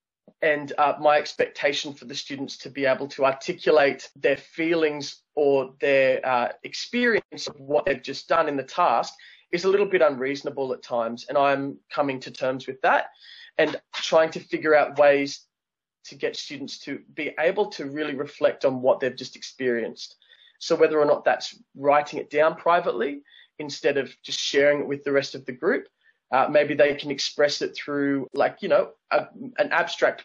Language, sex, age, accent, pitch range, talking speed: English, male, 20-39, Australian, 135-150 Hz, 185 wpm